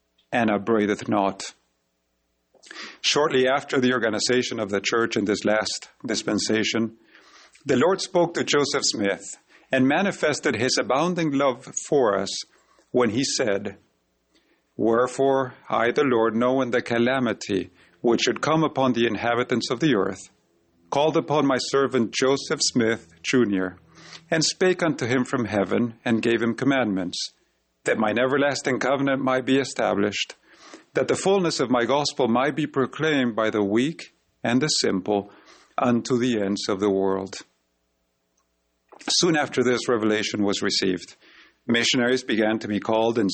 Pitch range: 100-135 Hz